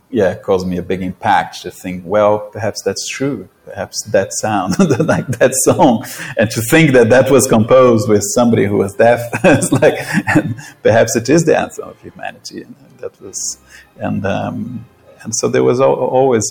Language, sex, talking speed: Spanish, male, 190 wpm